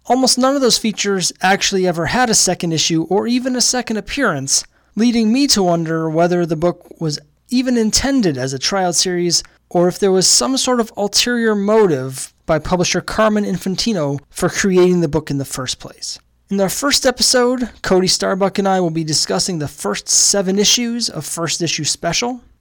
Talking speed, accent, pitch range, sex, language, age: 185 wpm, American, 155-200 Hz, male, English, 20-39